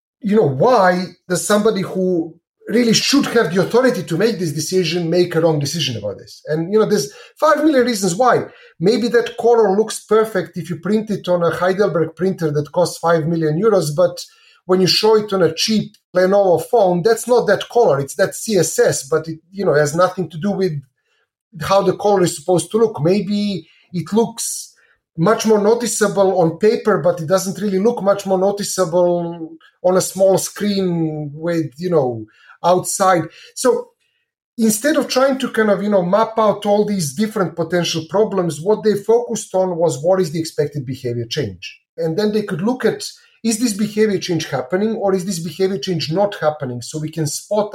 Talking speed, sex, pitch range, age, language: 190 wpm, male, 165-215 Hz, 30-49, English